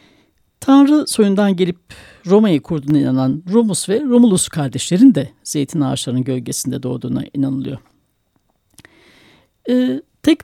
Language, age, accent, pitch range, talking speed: Turkish, 60-79, native, 180-255 Hz, 105 wpm